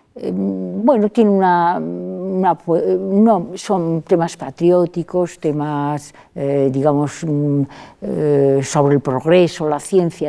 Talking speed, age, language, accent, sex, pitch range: 105 wpm, 50-69, Spanish, Spanish, female, 135-185 Hz